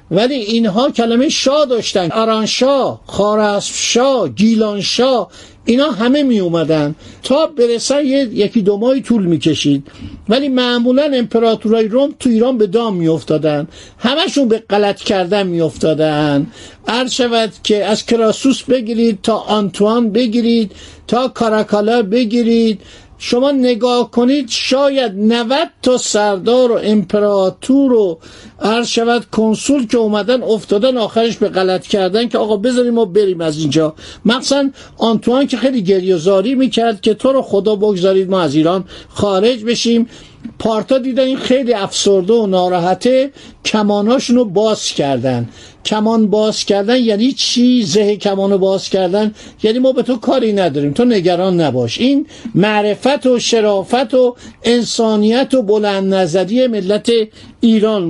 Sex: male